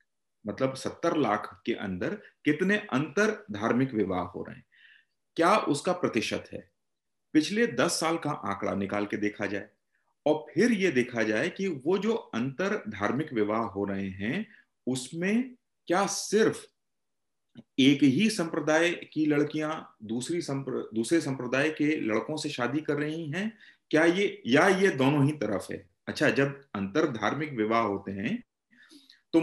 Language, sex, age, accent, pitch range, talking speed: Hindi, male, 40-59, native, 110-175 Hz, 150 wpm